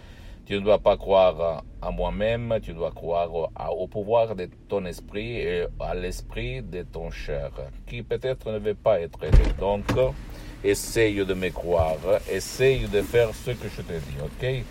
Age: 60-79